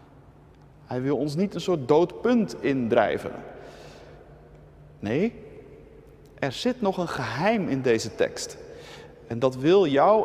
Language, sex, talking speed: Dutch, male, 125 wpm